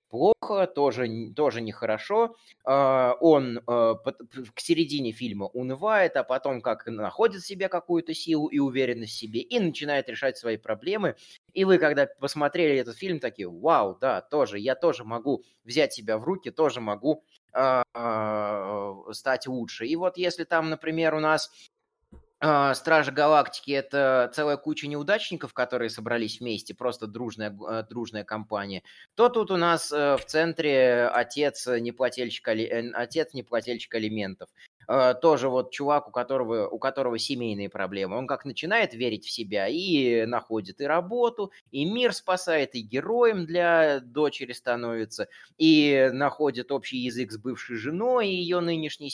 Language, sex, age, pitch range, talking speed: Russian, male, 20-39, 120-160 Hz, 145 wpm